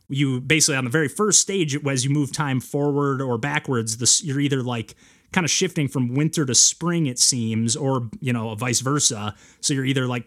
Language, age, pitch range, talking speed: English, 30-49, 120-145 Hz, 205 wpm